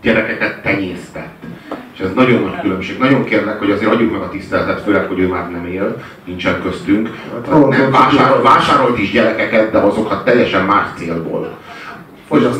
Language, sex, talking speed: Hungarian, male, 165 wpm